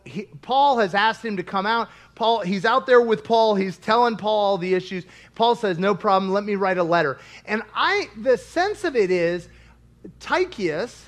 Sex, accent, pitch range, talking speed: male, American, 185-275 Hz, 200 wpm